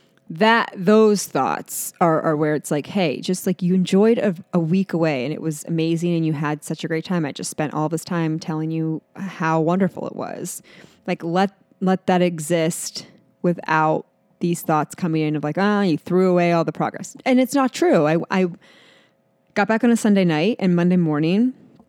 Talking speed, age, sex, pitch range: 205 wpm, 20-39, female, 160-205 Hz